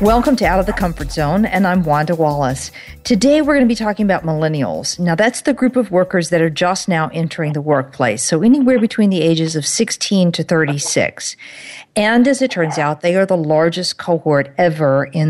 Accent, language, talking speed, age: American, English, 210 wpm, 50-69